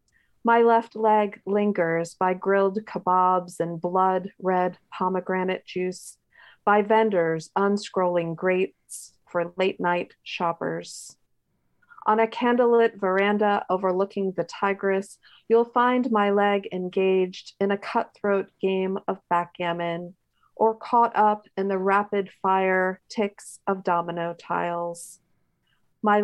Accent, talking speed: American, 115 wpm